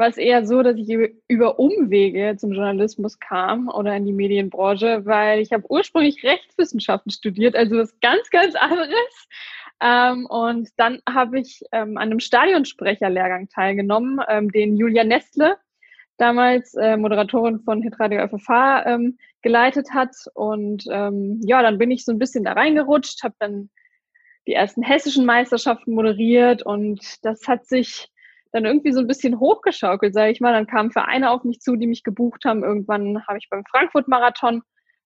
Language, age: German, 20-39